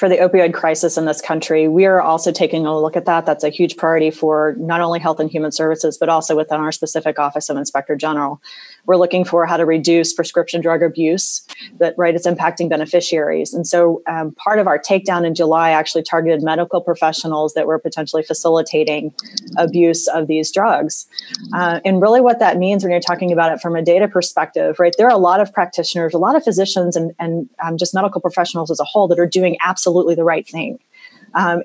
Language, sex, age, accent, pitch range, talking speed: English, female, 30-49, American, 160-185 Hz, 215 wpm